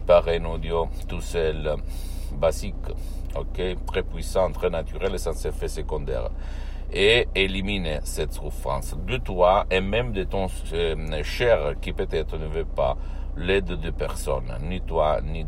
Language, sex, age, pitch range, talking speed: Italian, male, 60-79, 65-85 Hz, 145 wpm